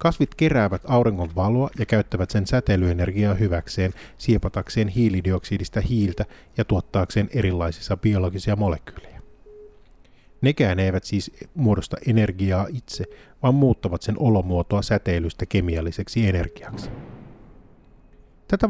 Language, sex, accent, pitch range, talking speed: Finnish, male, native, 95-120 Hz, 100 wpm